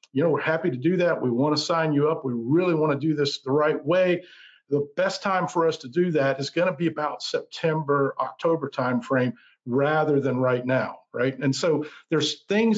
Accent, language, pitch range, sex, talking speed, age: American, English, 135-165 Hz, male, 220 wpm, 50-69